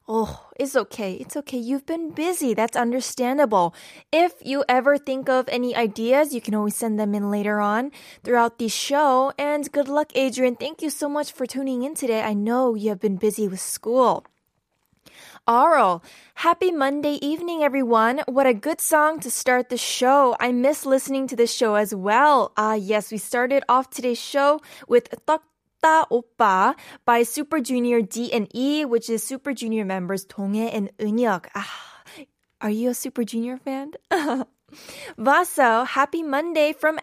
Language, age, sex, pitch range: Korean, 10-29, female, 235-290 Hz